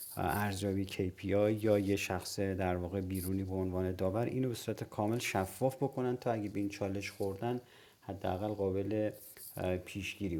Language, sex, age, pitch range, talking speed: Persian, male, 40-59, 95-110 Hz, 145 wpm